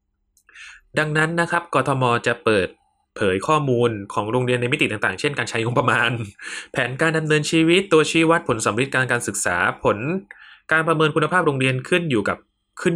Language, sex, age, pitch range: Thai, male, 20-39, 105-145 Hz